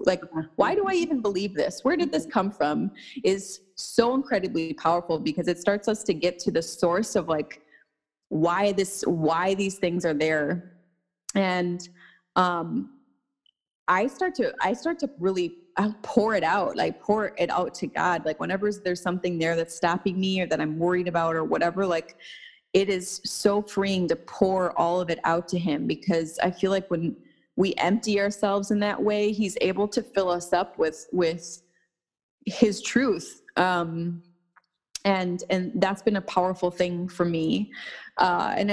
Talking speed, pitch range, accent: 175 wpm, 175-215 Hz, American